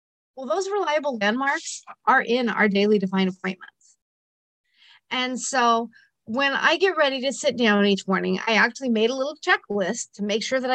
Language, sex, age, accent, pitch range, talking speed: English, female, 40-59, American, 200-280 Hz, 175 wpm